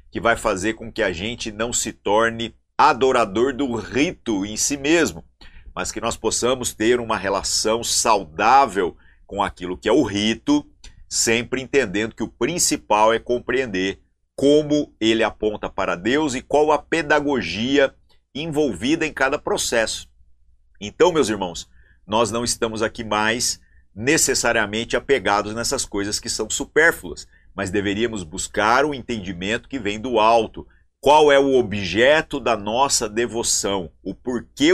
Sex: male